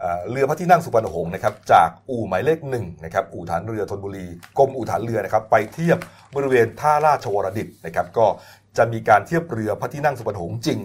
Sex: male